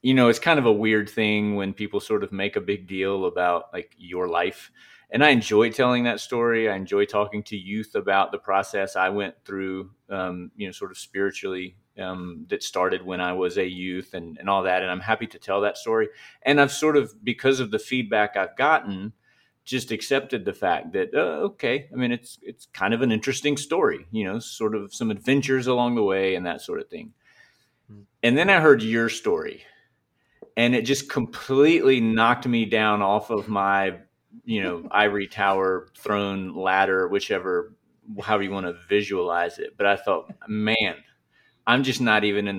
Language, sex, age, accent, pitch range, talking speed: English, male, 30-49, American, 100-125 Hz, 195 wpm